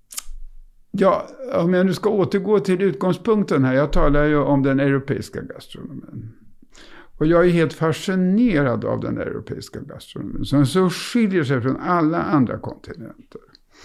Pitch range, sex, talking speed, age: 135-185 Hz, male, 145 wpm, 60-79